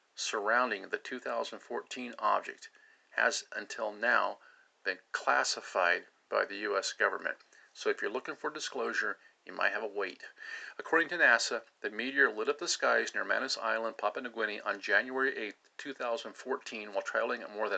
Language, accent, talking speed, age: English, American, 160 wpm, 50-69